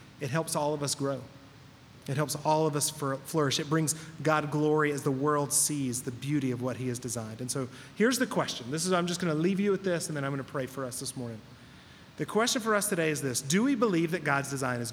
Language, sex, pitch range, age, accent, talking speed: English, male, 135-165 Hz, 30-49, American, 265 wpm